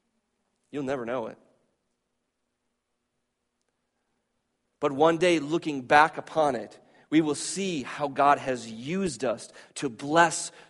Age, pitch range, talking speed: 30-49, 130-165 Hz, 120 wpm